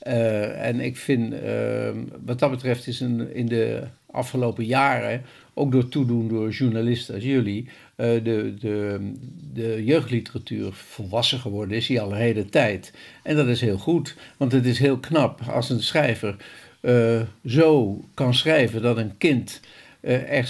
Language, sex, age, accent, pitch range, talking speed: Dutch, male, 60-79, Dutch, 110-130 Hz, 150 wpm